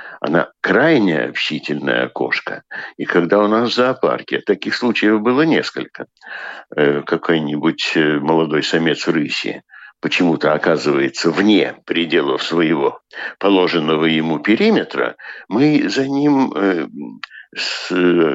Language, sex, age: Russian, male, 60-79